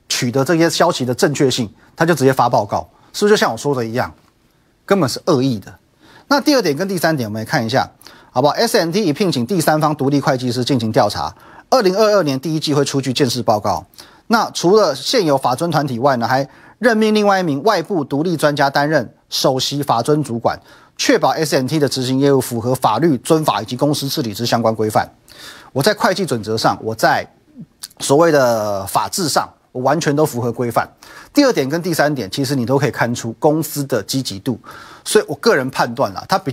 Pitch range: 120-165 Hz